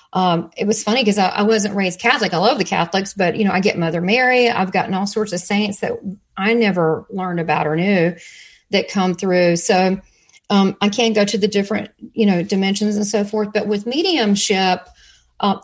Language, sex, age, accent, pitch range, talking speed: English, female, 40-59, American, 195-230 Hz, 210 wpm